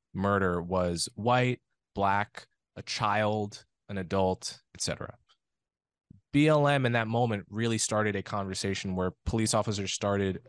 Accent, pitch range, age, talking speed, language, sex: American, 95-120 Hz, 20-39, 120 wpm, English, male